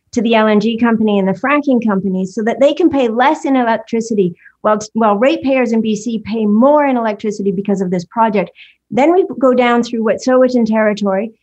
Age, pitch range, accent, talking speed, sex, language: 50-69, 205-250 Hz, American, 195 wpm, female, English